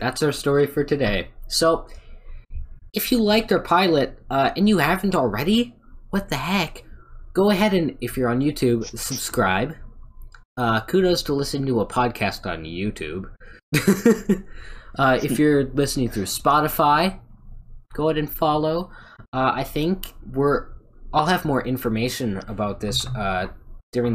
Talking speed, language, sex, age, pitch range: 145 wpm, English, male, 20-39, 115-150 Hz